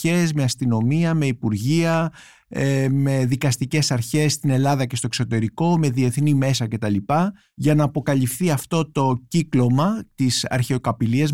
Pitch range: 125-160 Hz